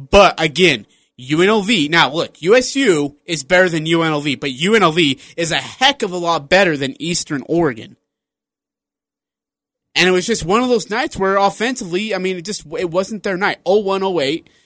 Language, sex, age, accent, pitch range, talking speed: English, male, 30-49, American, 155-200 Hz, 170 wpm